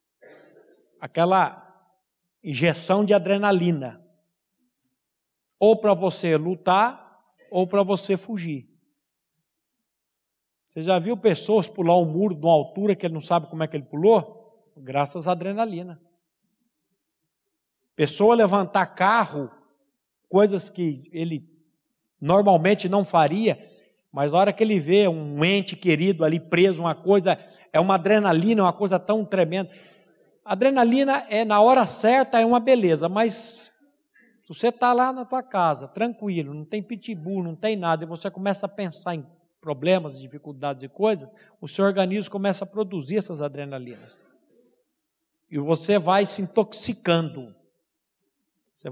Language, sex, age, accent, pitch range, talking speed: Portuguese, male, 50-69, Brazilian, 165-215 Hz, 135 wpm